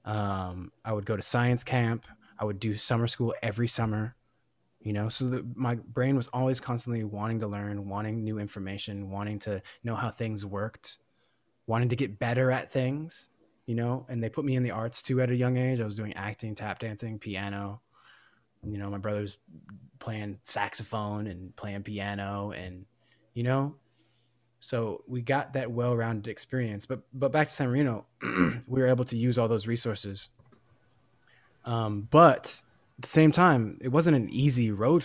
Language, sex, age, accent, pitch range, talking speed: English, male, 20-39, American, 105-125 Hz, 180 wpm